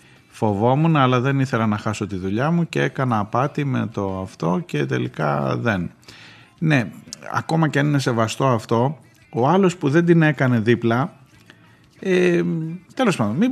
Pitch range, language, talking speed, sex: 100-140 Hz, Greek, 160 wpm, male